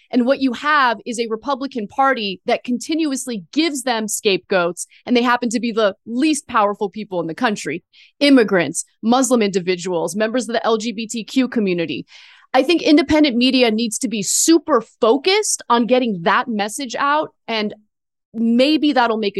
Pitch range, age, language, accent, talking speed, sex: 210-275 Hz, 30-49, English, American, 160 wpm, female